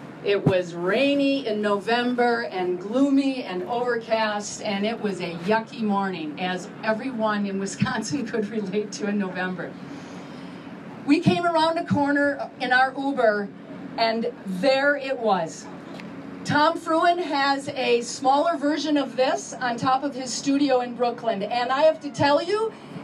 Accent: American